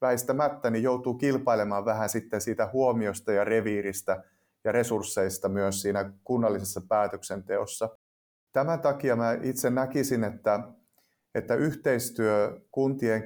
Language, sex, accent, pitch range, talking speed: Finnish, male, native, 100-125 Hz, 110 wpm